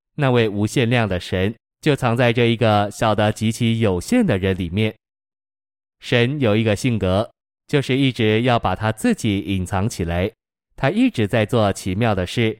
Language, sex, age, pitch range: Chinese, male, 20-39, 100-120 Hz